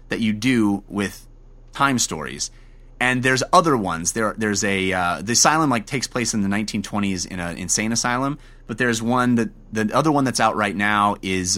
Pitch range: 105-130 Hz